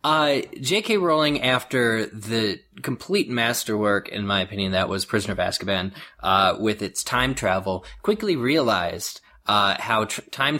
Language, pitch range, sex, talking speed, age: English, 105-130 Hz, male, 145 wpm, 20-39